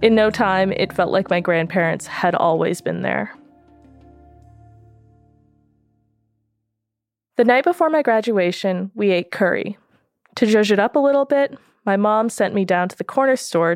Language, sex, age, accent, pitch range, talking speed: English, female, 20-39, American, 170-220 Hz, 155 wpm